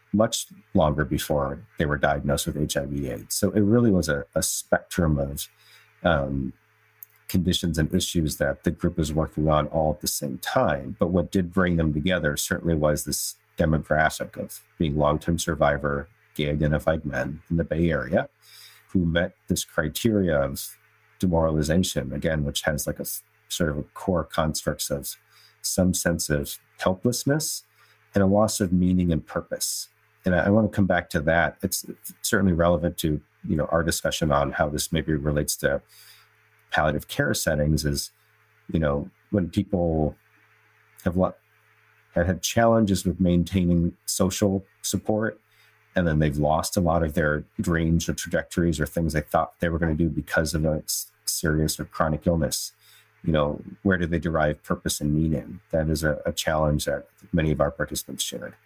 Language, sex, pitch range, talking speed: English, male, 75-100 Hz, 170 wpm